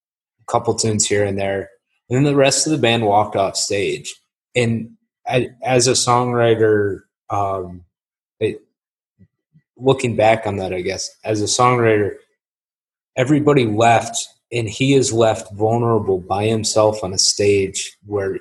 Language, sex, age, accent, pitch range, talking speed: English, male, 20-39, American, 100-120 Hz, 135 wpm